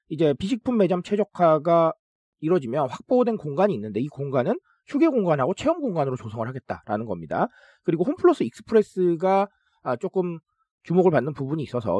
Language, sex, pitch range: Korean, male, 140-220 Hz